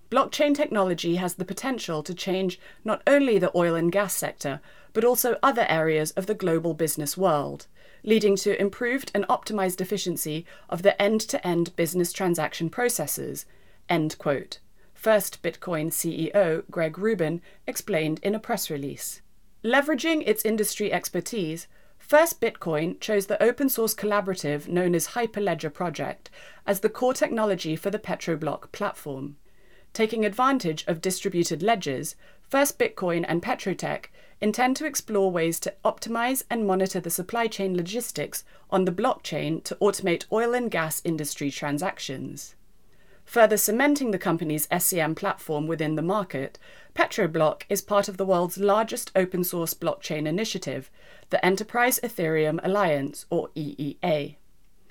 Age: 30-49